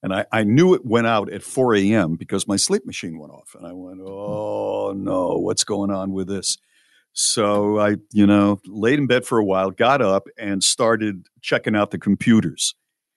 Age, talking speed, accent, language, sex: 60-79, 200 wpm, American, English, male